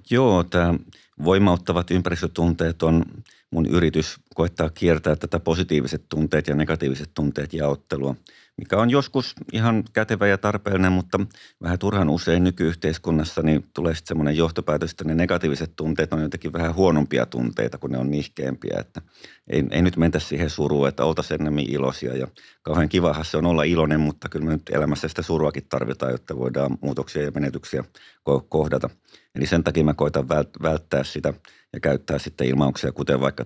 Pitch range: 70-85 Hz